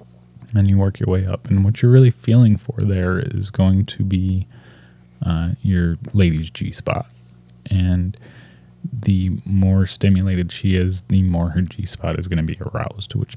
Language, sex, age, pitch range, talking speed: English, male, 20-39, 75-105 Hz, 165 wpm